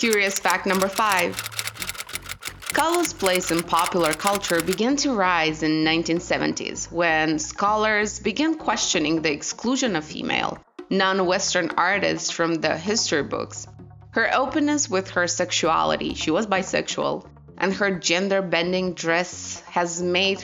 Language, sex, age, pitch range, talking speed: English, female, 20-39, 165-205 Hz, 125 wpm